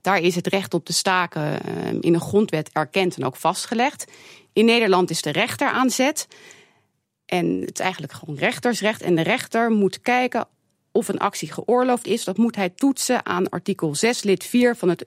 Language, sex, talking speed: Dutch, female, 185 wpm